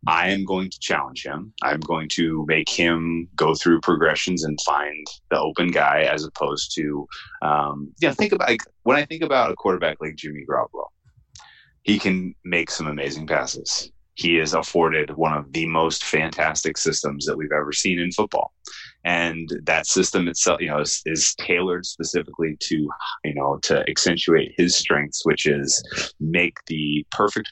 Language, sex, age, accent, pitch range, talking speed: English, male, 30-49, American, 75-90 Hz, 175 wpm